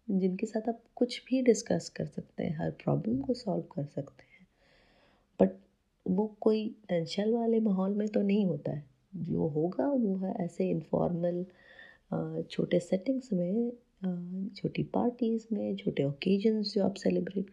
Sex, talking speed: female, 150 wpm